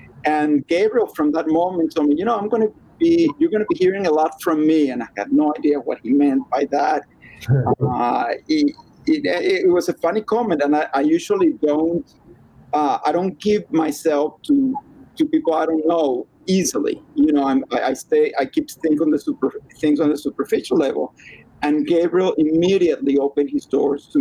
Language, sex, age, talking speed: English, male, 50-69, 200 wpm